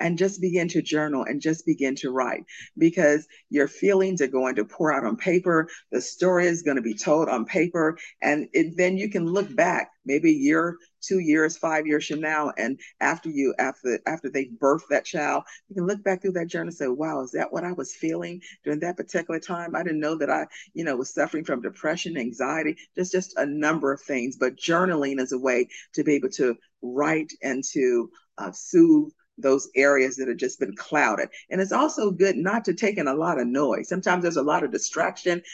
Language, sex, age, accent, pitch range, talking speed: English, female, 50-69, American, 145-185 Hz, 220 wpm